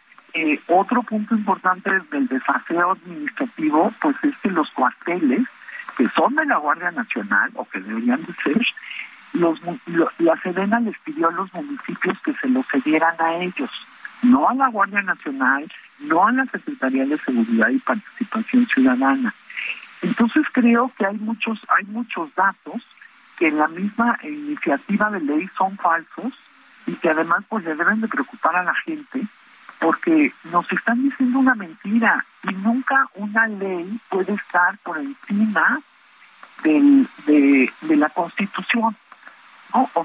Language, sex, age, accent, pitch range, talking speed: Spanish, male, 50-69, Mexican, 185-265 Hz, 150 wpm